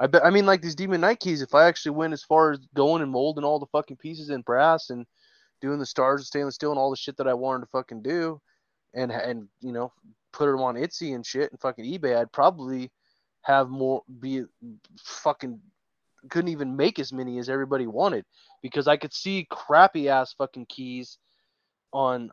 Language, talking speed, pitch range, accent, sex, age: English, 210 wpm, 130-165 Hz, American, male, 20-39